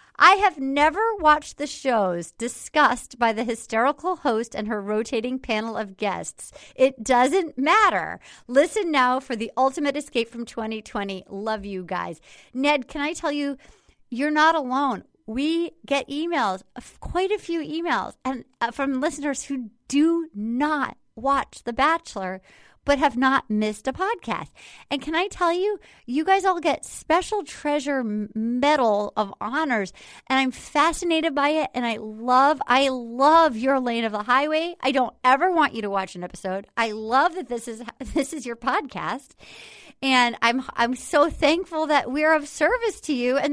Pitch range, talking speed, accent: 230-300 Hz, 165 wpm, American